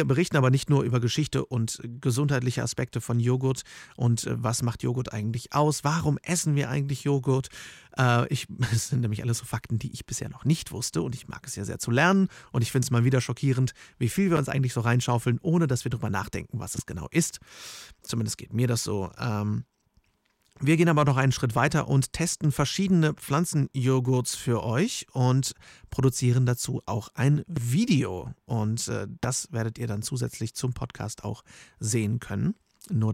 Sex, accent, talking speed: male, German, 190 wpm